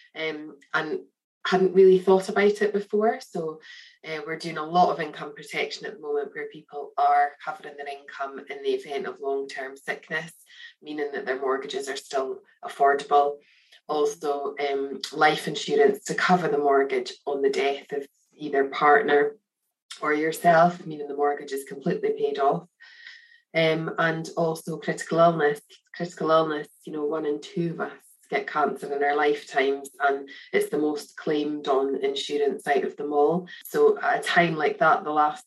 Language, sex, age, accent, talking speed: English, female, 20-39, Irish, 170 wpm